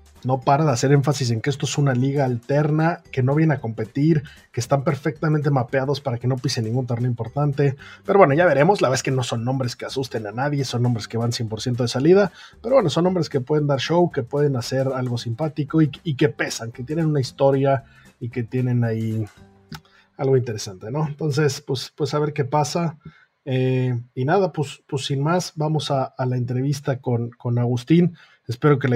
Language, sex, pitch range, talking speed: Spanish, male, 125-150 Hz, 215 wpm